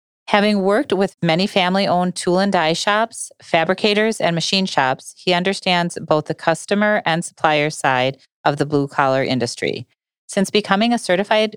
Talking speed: 140 wpm